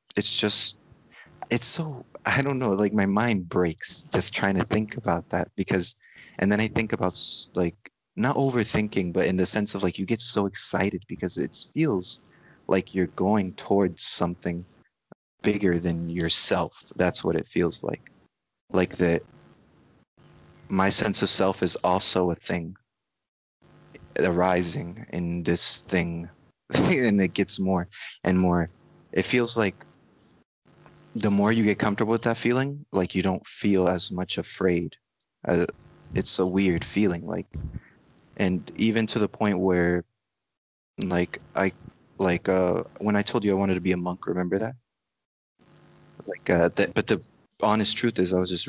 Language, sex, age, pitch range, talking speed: English, male, 30-49, 90-105 Hz, 160 wpm